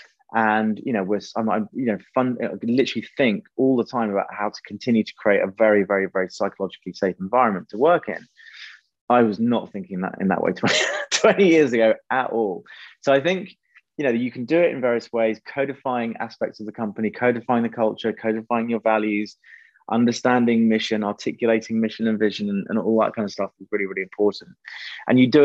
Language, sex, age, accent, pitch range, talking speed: English, male, 20-39, British, 105-130 Hz, 200 wpm